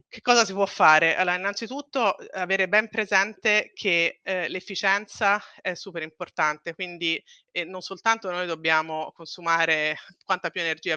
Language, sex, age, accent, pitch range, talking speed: Italian, female, 30-49, native, 155-185 Hz, 140 wpm